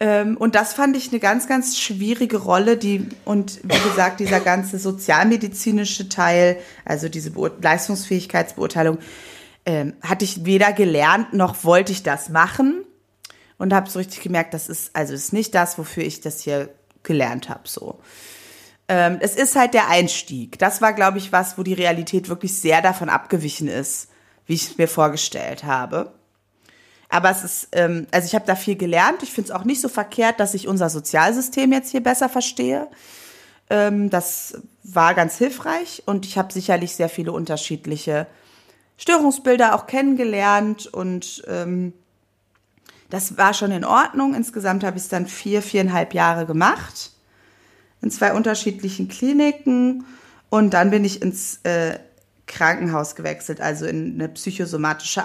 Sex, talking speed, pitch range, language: female, 155 wpm, 170-215 Hz, German